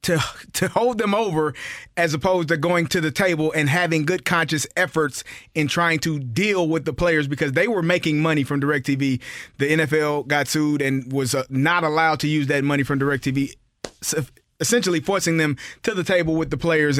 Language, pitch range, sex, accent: English, 145-175 Hz, male, American